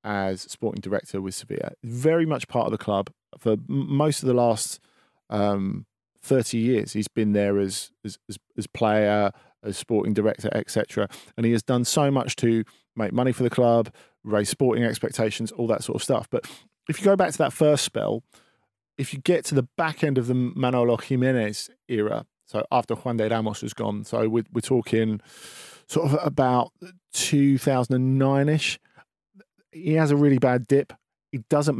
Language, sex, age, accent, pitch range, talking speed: English, male, 40-59, British, 110-145 Hz, 180 wpm